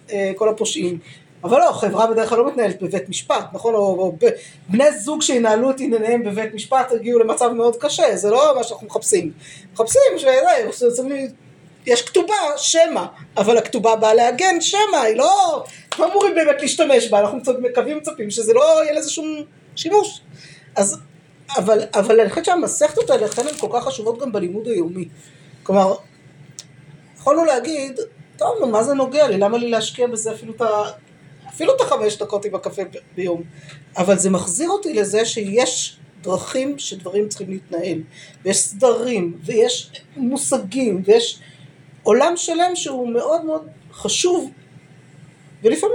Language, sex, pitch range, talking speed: Hebrew, female, 190-290 Hz, 140 wpm